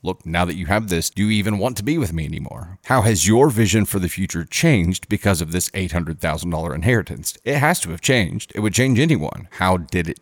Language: English